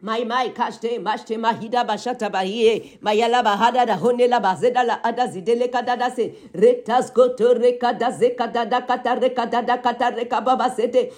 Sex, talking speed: female, 140 wpm